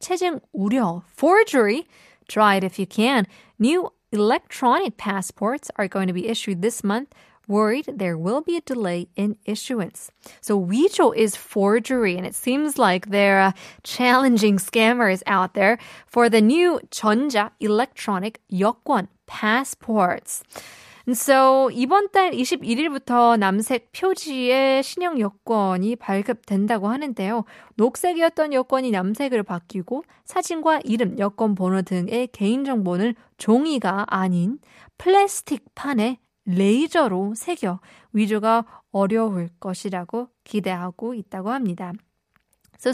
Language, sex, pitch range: Korean, female, 200-255 Hz